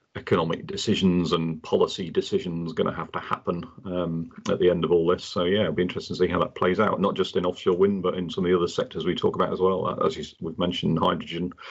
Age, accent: 40-59, British